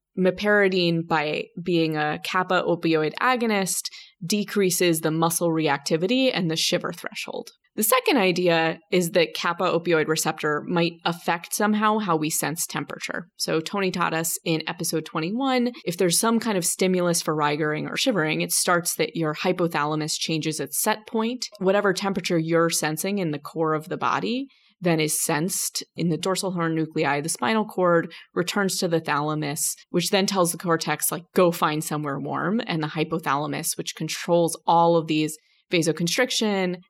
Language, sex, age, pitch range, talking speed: English, female, 20-39, 160-195 Hz, 165 wpm